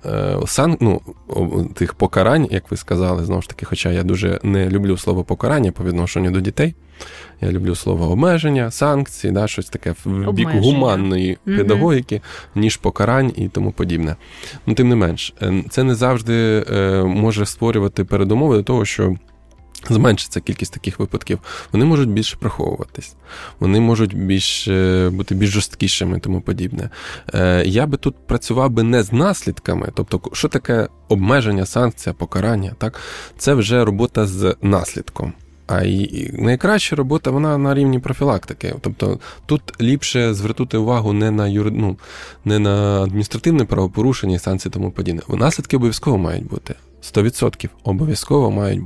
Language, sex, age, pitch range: Ukrainian, male, 20-39, 95-120 Hz